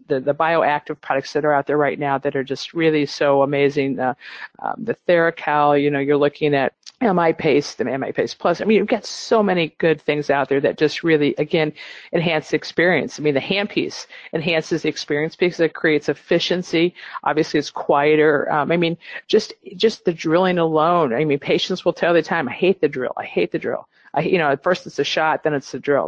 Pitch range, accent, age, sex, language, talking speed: 145-175 Hz, American, 50-69, female, English, 220 wpm